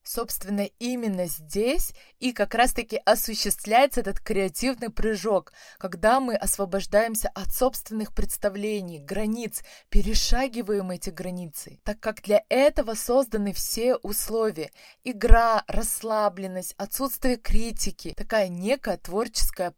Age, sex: 20-39, female